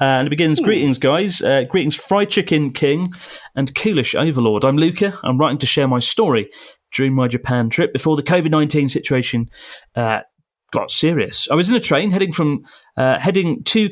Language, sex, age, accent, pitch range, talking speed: English, male, 30-49, British, 130-170 Hz, 180 wpm